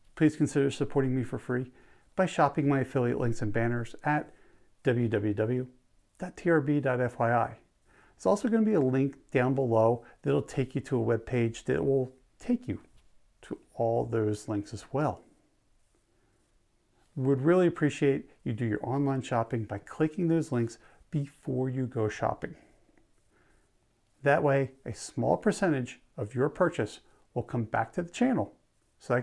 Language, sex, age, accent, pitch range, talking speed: English, male, 50-69, American, 115-150 Hz, 150 wpm